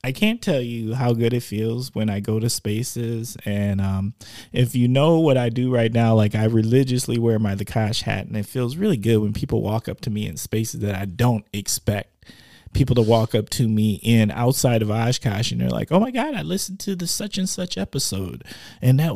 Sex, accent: male, American